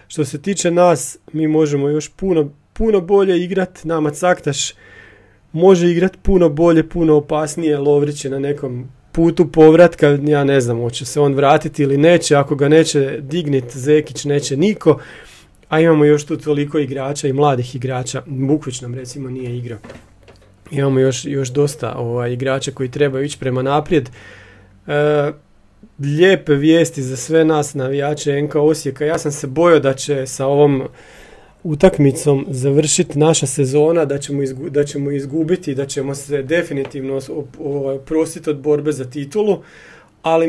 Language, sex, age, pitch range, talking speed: Croatian, male, 40-59, 135-155 Hz, 155 wpm